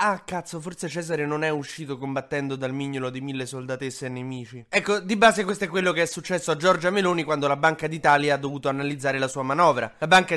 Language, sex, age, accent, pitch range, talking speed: Italian, male, 20-39, native, 135-170 Hz, 225 wpm